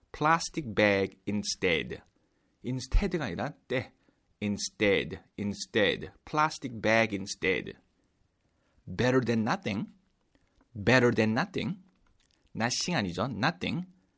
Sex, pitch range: male, 100-165 Hz